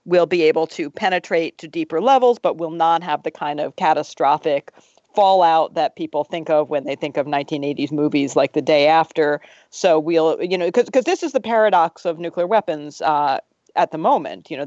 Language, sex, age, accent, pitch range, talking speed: English, female, 40-59, American, 150-180 Hz, 205 wpm